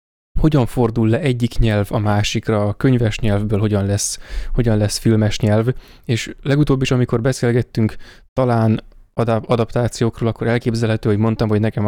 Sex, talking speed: male, 140 wpm